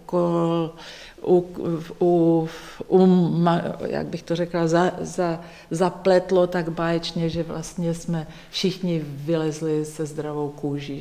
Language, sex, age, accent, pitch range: Czech, female, 40-59, native, 145-175 Hz